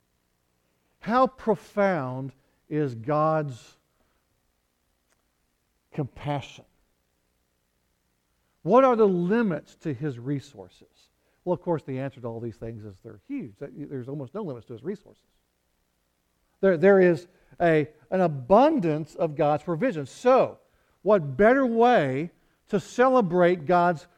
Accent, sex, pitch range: American, male, 115-175 Hz